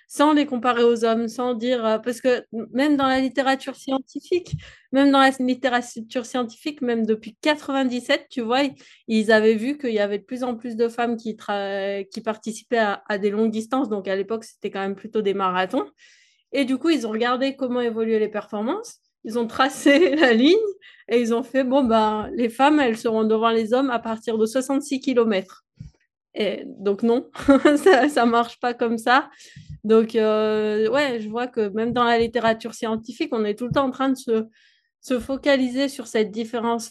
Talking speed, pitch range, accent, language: 195 wpm, 220-265 Hz, French, French